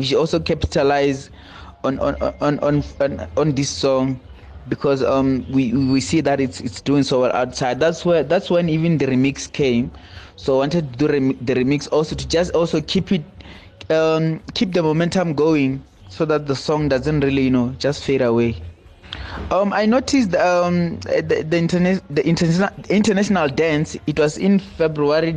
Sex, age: male, 20-39